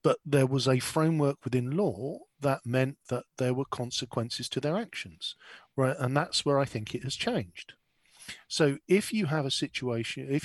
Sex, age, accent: male, 40-59, British